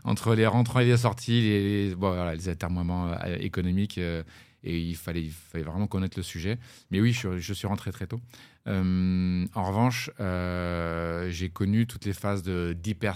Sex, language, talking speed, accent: male, French, 185 wpm, French